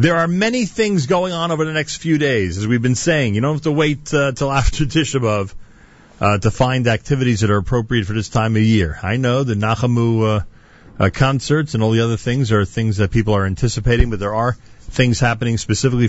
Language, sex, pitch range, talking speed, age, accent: English, male, 110-140 Hz, 225 wpm, 40-59, American